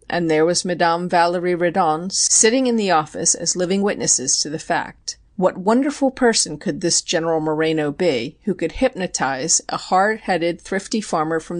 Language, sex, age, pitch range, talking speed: English, female, 40-59, 170-210 Hz, 165 wpm